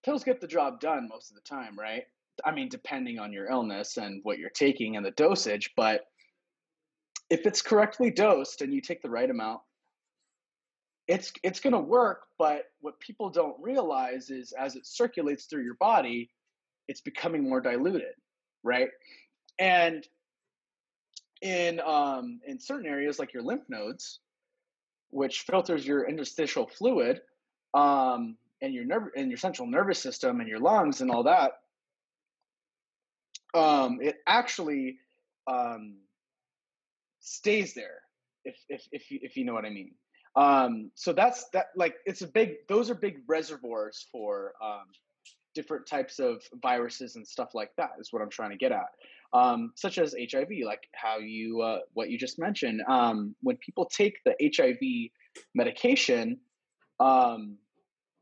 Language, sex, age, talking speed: English, male, 30-49, 155 wpm